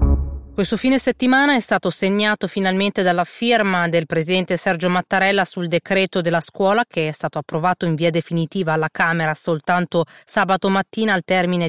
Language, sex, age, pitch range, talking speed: Italian, female, 20-39, 165-195 Hz, 160 wpm